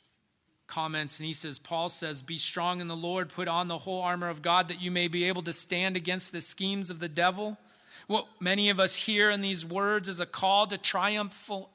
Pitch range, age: 165-230 Hz, 30-49